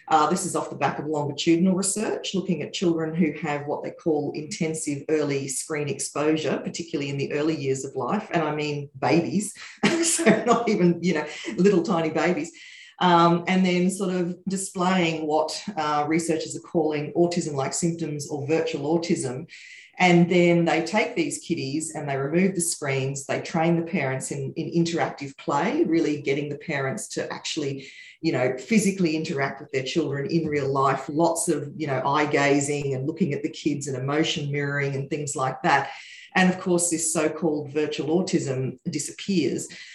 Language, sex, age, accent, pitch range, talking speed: English, female, 40-59, Australian, 150-180 Hz, 180 wpm